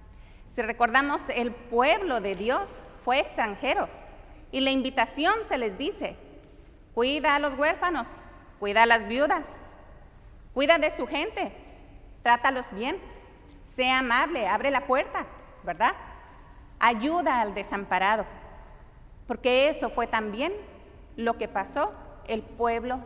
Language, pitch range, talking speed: English, 225-285 Hz, 120 wpm